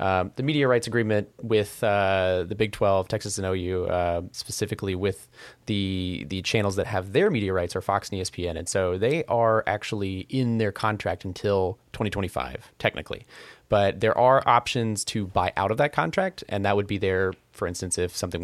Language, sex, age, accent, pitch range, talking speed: English, male, 30-49, American, 95-115 Hz, 190 wpm